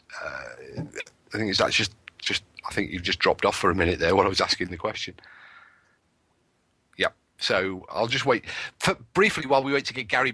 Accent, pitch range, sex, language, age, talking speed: British, 95-120 Hz, male, English, 40-59, 220 wpm